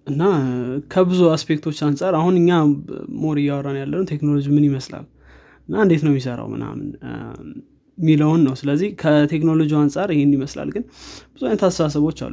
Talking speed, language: 90 wpm, Amharic